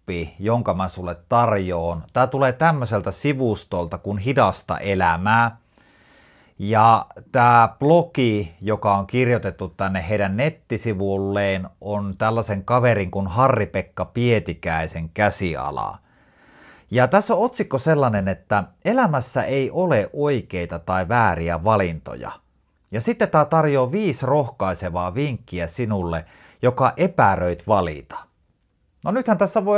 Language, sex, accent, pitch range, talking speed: Finnish, male, native, 95-135 Hz, 110 wpm